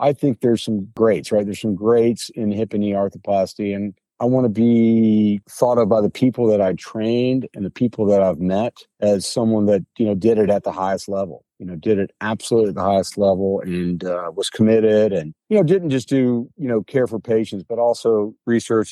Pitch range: 105-125 Hz